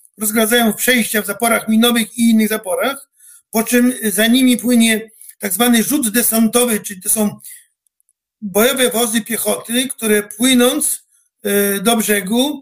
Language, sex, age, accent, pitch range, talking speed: Polish, male, 50-69, native, 215-245 Hz, 130 wpm